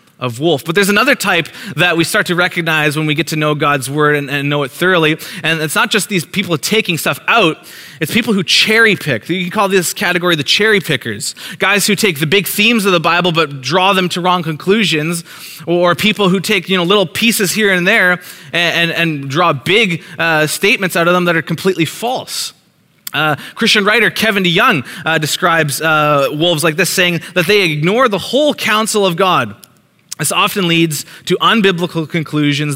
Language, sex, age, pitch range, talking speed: English, male, 20-39, 155-195 Hz, 205 wpm